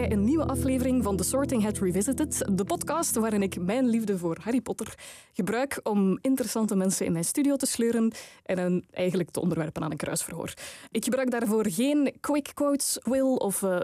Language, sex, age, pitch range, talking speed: Dutch, female, 20-39, 195-280 Hz, 180 wpm